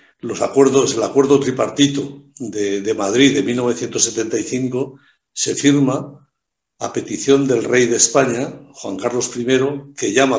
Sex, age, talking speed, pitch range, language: male, 60-79, 135 wpm, 115-140 Hz, Spanish